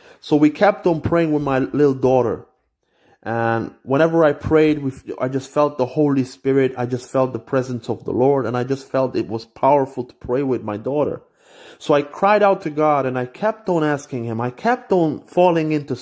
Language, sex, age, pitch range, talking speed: English, male, 30-49, 125-175 Hz, 210 wpm